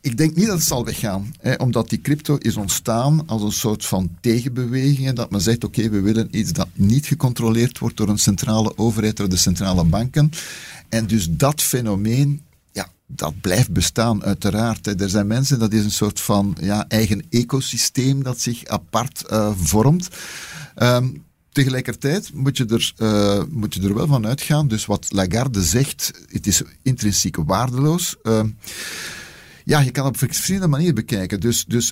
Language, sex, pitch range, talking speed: Dutch, male, 105-135 Hz, 180 wpm